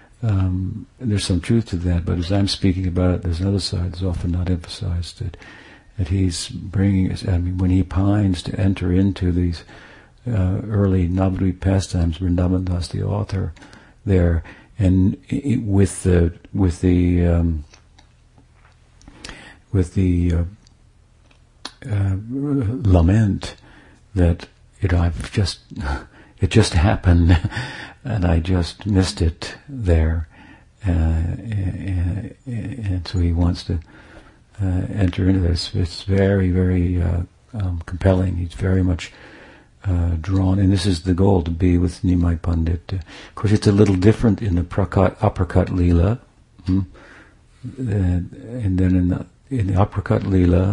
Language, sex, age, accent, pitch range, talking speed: English, male, 60-79, American, 90-100 Hz, 145 wpm